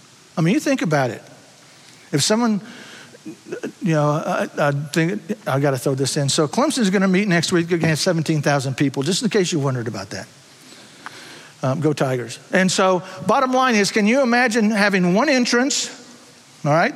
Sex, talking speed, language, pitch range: male, 185 wpm, English, 135-215 Hz